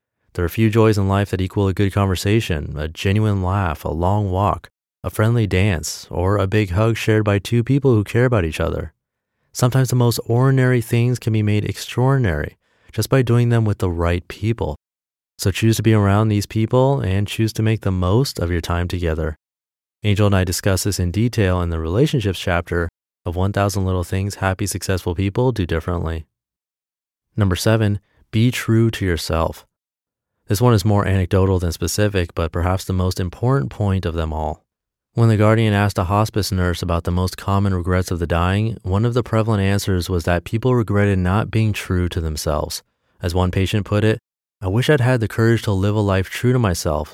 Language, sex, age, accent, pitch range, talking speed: English, male, 30-49, American, 90-110 Hz, 200 wpm